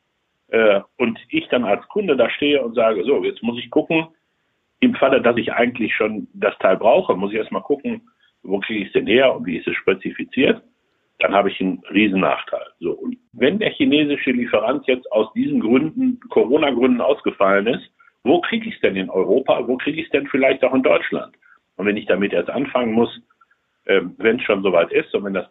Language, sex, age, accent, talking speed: German, male, 60-79, German, 205 wpm